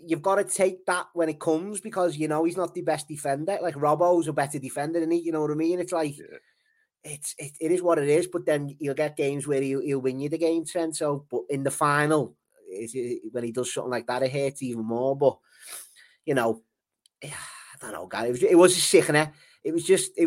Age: 20-39